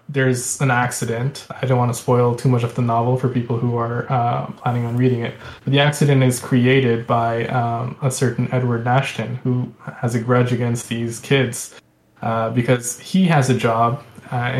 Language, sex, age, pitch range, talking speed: English, male, 20-39, 120-130 Hz, 195 wpm